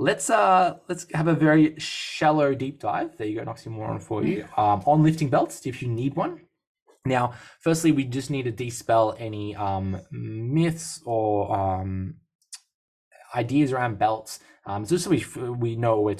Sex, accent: male, Australian